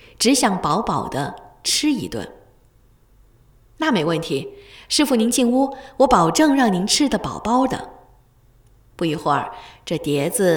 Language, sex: Chinese, female